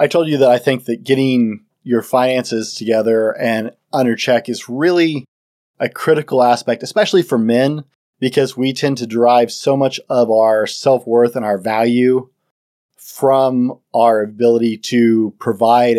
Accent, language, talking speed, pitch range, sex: American, English, 150 wpm, 115-135 Hz, male